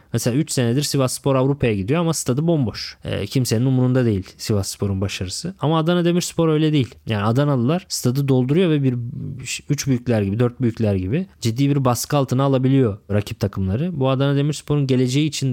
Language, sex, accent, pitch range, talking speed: Turkish, male, native, 115-150 Hz, 175 wpm